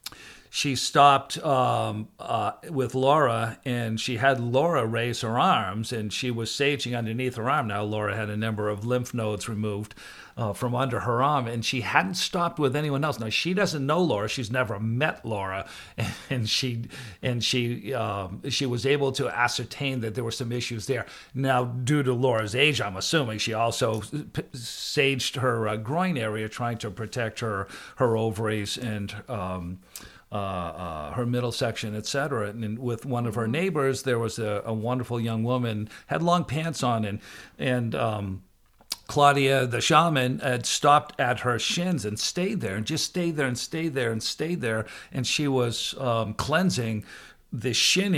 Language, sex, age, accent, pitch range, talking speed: English, male, 50-69, American, 110-135 Hz, 180 wpm